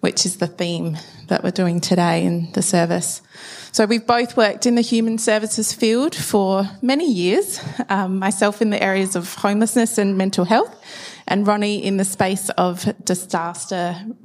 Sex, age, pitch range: female, 20-39, 180-240 Hz